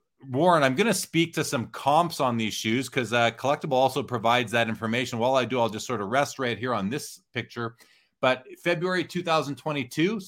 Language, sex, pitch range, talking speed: English, male, 125-160 Hz, 195 wpm